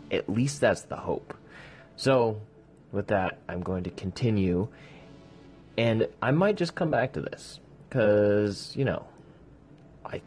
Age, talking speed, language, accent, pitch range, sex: 20-39, 140 wpm, English, American, 95-130 Hz, male